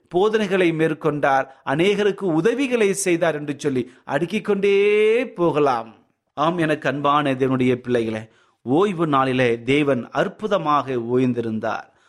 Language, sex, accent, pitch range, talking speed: Tamil, male, native, 130-180 Hz, 95 wpm